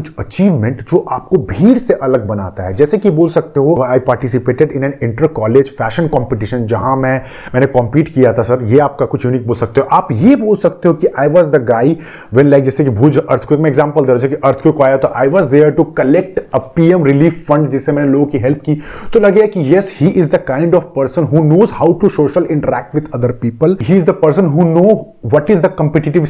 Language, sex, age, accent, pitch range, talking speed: Hindi, male, 30-49, native, 135-180 Hz, 40 wpm